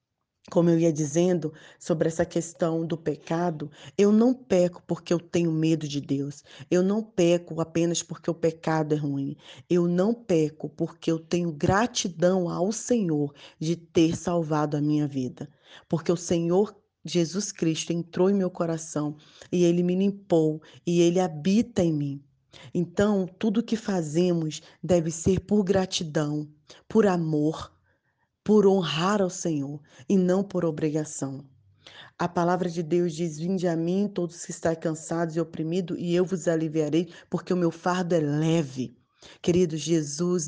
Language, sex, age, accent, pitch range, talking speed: Portuguese, female, 20-39, Brazilian, 155-180 Hz, 155 wpm